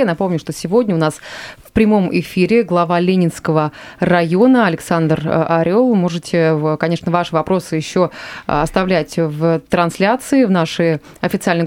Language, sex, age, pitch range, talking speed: Russian, female, 20-39, 160-205 Hz, 125 wpm